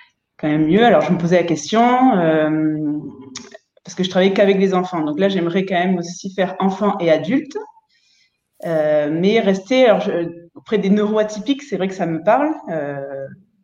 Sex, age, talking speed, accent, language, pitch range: female, 20-39, 185 wpm, French, French, 160-205 Hz